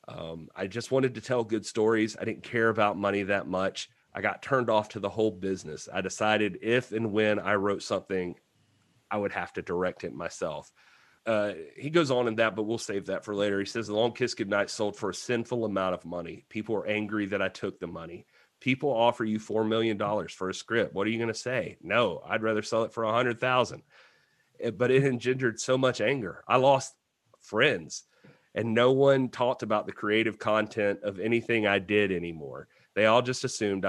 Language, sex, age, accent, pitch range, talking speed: English, male, 30-49, American, 100-120 Hz, 210 wpm